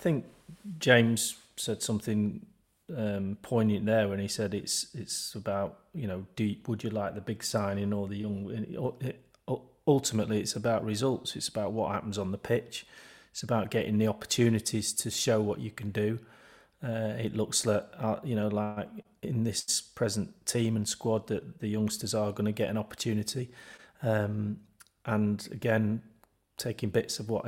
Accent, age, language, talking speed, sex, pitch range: British, 30-49, English, 170 wpm, male, 105-115 Hz